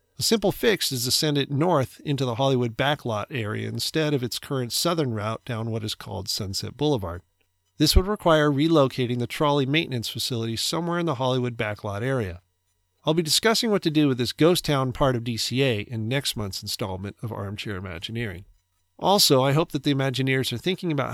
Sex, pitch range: male, 110-150 Hz